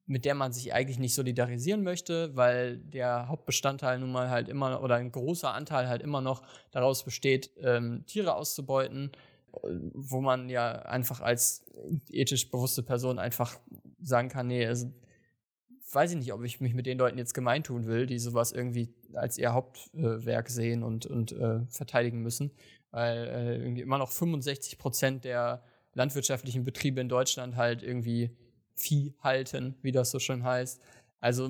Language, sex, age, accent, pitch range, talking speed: German, male, 20-39, German, 120-135 Hz, 165 wpm